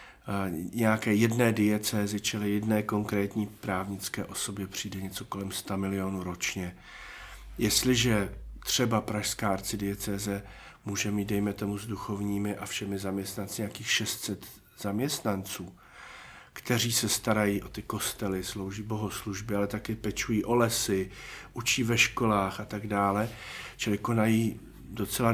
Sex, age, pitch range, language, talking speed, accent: male, 40-59, 100-110 Hz, Czech, 125 wpm, native